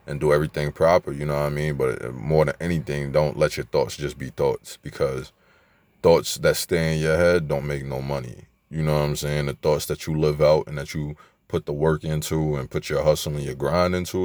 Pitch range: 75-80 Hz